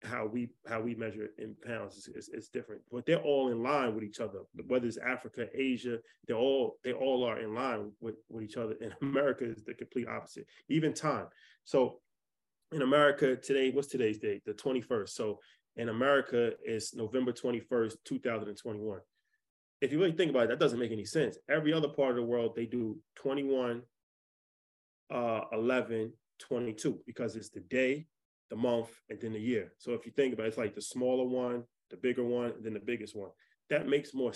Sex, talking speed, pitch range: male, 195 wpm, 110-130 Hz